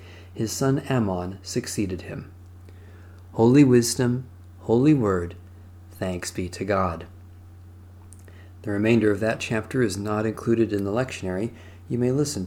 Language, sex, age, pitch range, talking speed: English, male, 40-59, 90-125 Hz, 130 wpm